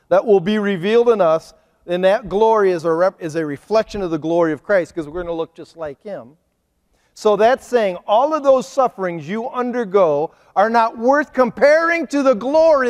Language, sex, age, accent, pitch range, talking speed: English, male, 40-59, American, 155-240 Hz, 195 wpm